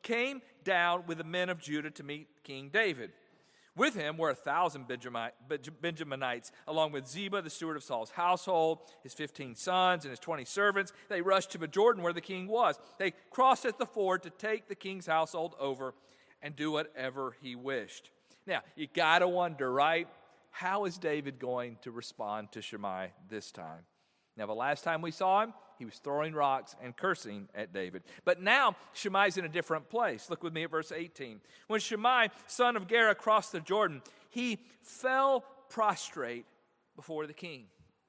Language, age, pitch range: English, 40-59, 150-225 Hz